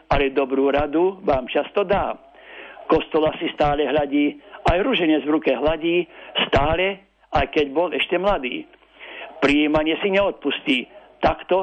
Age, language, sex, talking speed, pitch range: 60-79, Slovak, male, 130 wpm, 150-195 Hz